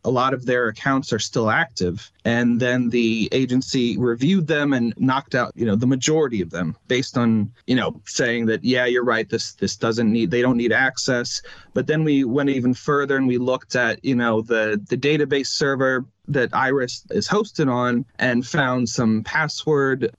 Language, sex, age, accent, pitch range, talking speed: English, male, 30-49, American, 120-140 Hz, 195 wpm